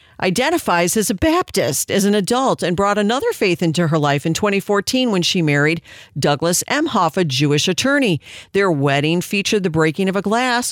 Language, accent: English, American